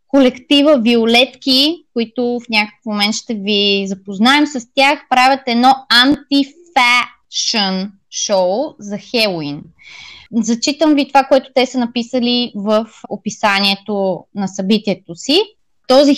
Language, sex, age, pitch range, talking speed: Bulgarian, female, 20-39, 220-295 Hz, 110 wpm